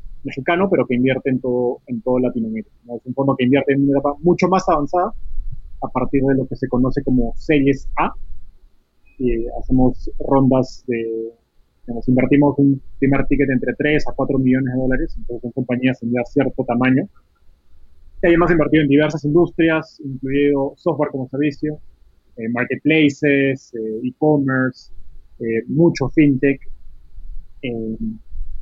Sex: male